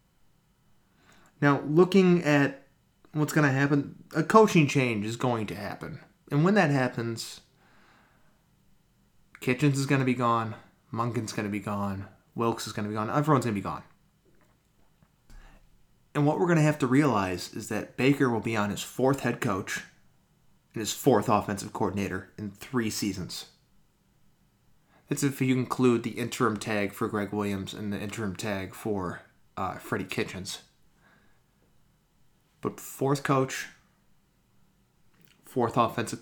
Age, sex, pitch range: 20-39, male, 105-140 Hz